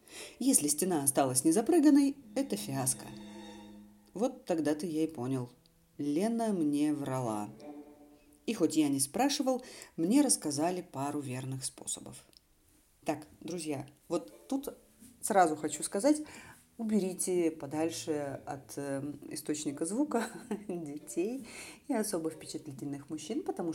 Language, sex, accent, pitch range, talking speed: Russian, female, native, 140-200 Hz, 110 wpm